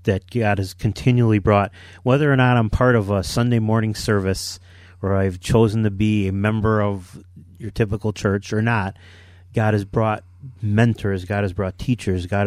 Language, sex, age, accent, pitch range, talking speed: English, male, 30-49, American, 95-110 Hz, 180 wpm